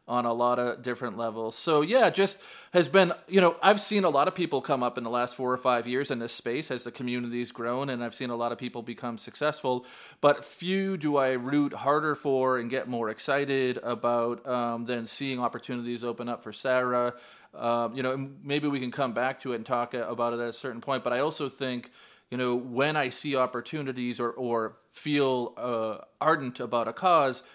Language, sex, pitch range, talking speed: English, male, 120-145 Hz, 220 wpm